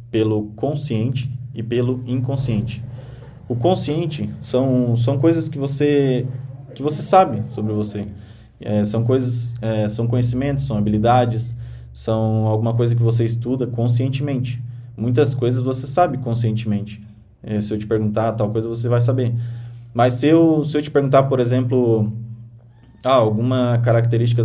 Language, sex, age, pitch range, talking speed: Portuguese, male, 20-39, 115-130 Hz, 145 wpm